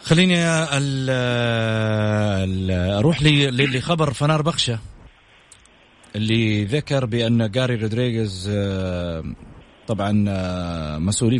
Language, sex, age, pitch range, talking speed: English, male, 30-49, 110-130 Hz, 95 wpm